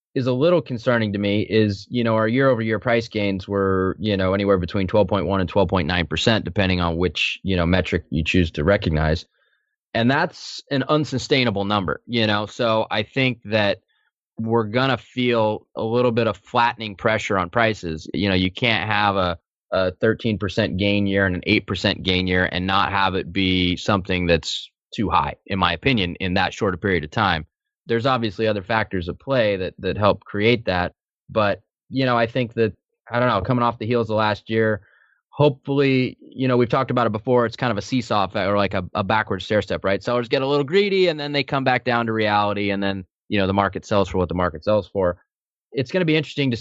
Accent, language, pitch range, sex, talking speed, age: American, English, 95-120 Hz, male, 220 wpm, 20-39